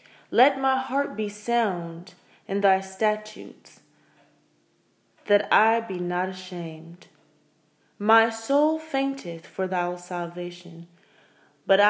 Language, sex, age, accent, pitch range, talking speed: English, female, 20-39, American, 180-235 Hz, 100 wpm